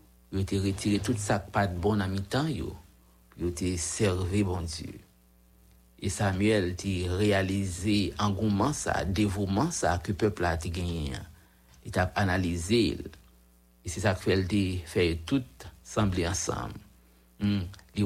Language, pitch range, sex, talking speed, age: English, 85-105 Hz, male, 145 wpm, 60-79